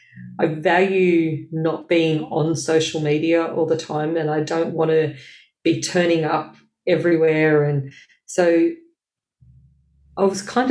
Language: English